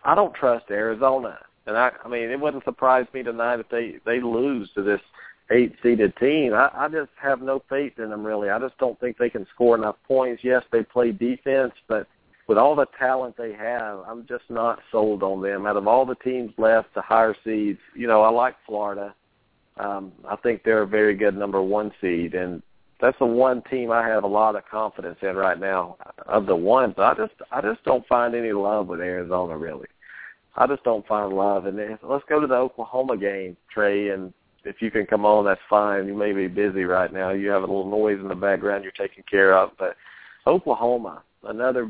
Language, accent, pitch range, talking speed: English, American, 100-120 Hz, 220 wpm